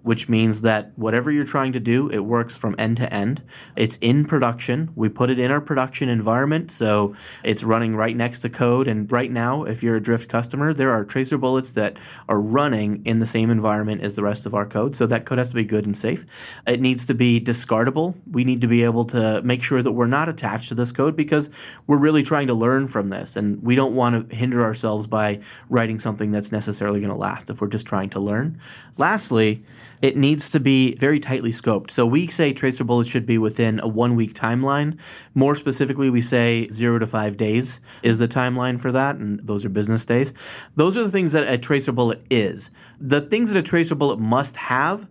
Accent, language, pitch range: American, English, 110-135 Hz